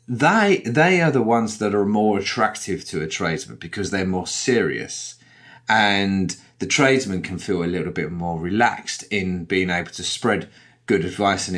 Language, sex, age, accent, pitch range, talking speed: English, male, 30-49, British, 95-130 Hz, 175 wpm